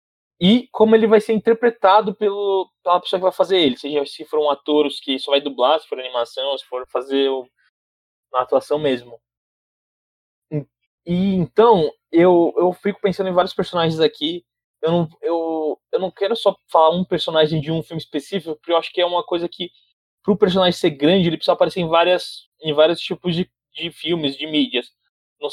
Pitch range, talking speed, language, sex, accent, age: 145-190 Hz, 195 wpm, Portuguese, male, Brazilian, 20-39